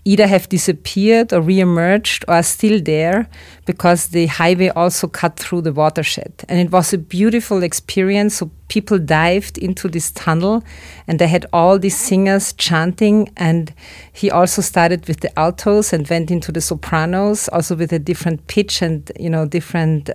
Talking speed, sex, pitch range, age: 170 wpm, female, 160-185 Hz, 40-59